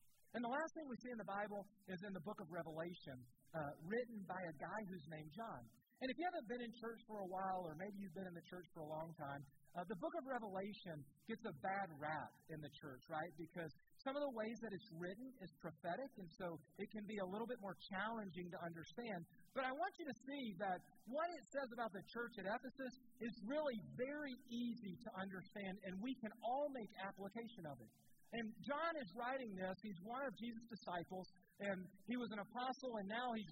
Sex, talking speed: male, 225 wpm